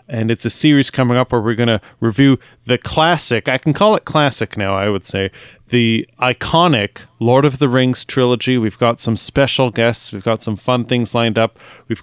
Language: English